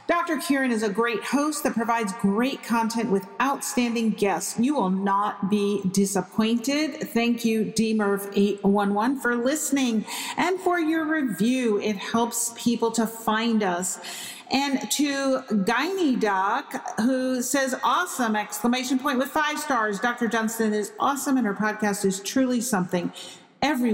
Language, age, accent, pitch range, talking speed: English, 50-69, American, 200-255 Hz, 140 wpm